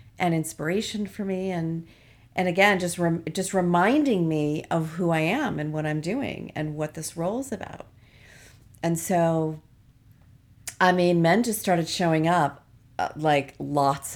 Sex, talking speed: female, 160 wpm